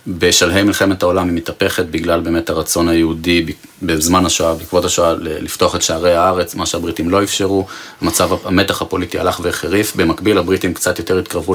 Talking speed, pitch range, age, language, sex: 160 wpm, 85-95 Hz, 30-49, Hebrew, male